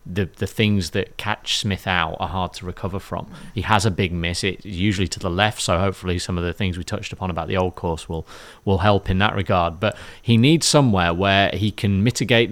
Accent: British